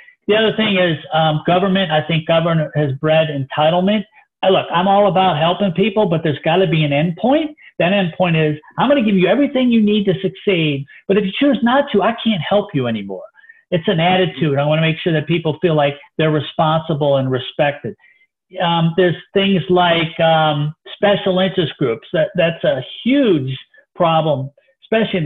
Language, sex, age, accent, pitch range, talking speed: English, male, 50-69, American, 150-190 Hz, 190 wpm